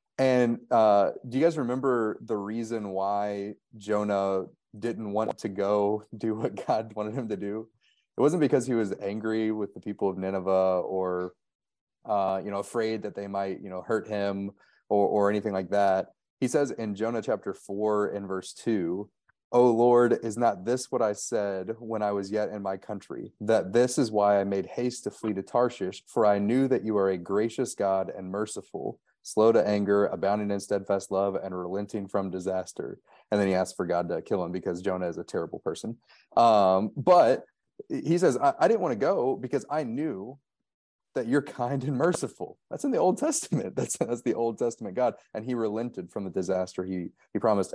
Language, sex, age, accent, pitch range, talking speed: English, male, 30-49, American, 95-115 Hz, 200 wpm